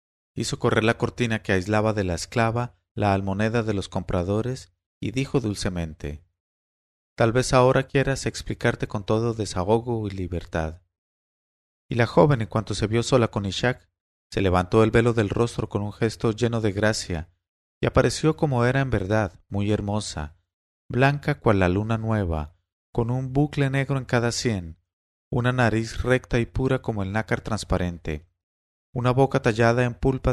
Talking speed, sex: 165 wpm, male